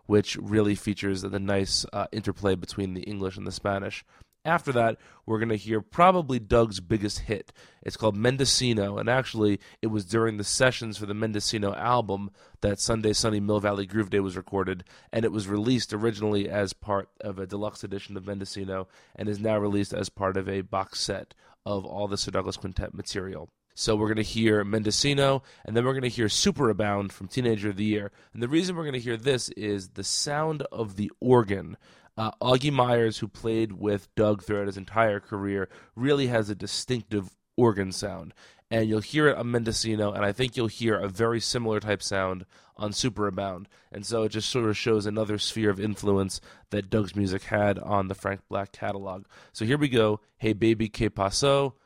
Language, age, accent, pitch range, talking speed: English, 30-49, American, 100-115 Hz, 200 wpm